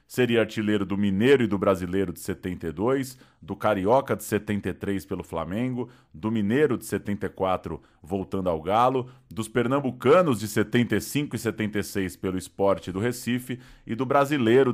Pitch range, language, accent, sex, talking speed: 100-125 Hz, Portuguese, Brazilian, male, 145 wpm